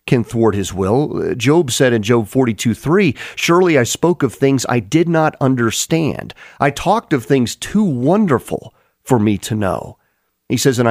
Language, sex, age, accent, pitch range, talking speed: English, male, 40-59, American, 115-145 Hz, 180 wpm